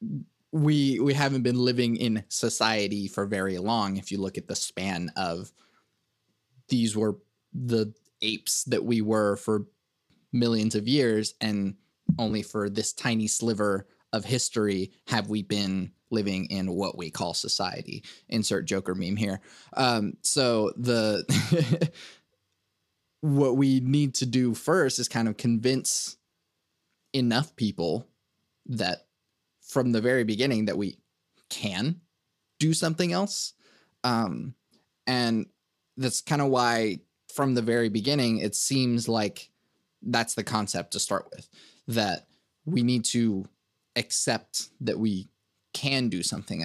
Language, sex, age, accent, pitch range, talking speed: English, male, 20-39, American, 100-125 Hz, 135 wpm